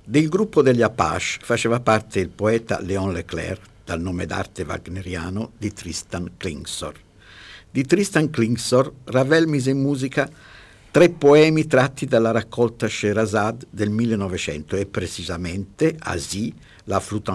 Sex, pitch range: male, 95-135 Hz